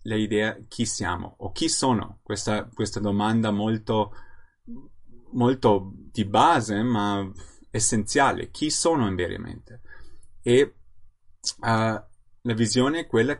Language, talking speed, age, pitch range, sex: Italian, 110 wpm, 30-49, 100-120 Hz, male